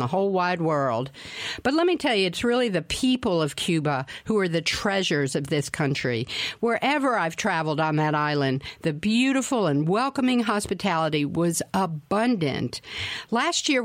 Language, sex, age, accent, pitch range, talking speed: English, female, 50-69, American, 170-245 Hz, 160 wpm